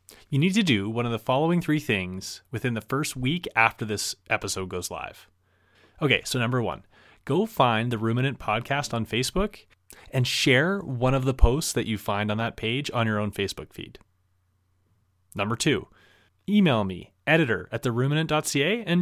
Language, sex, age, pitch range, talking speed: English, male, 30-49, 105-160 Hz, 175 wpm